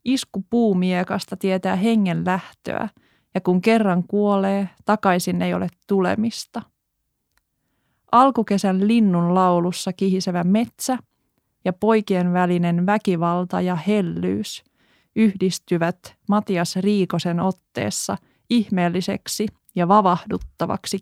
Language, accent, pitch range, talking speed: Finnish, native, 180-225 Hz, 90 wpm